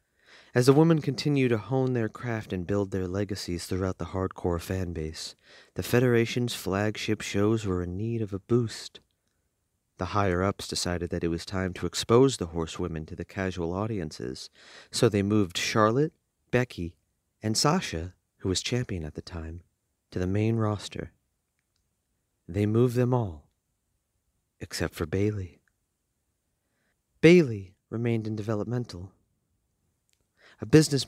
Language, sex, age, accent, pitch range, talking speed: English, male, 40-59, American, 90-115 Hz, 140 wpm